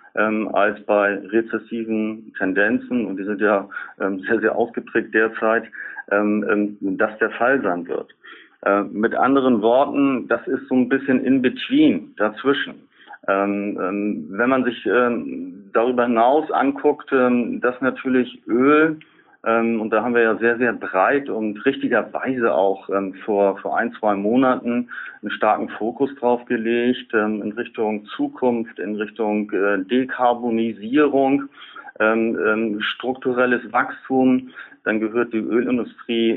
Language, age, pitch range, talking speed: German, 40-59, 105-125 Hz, 120 wpm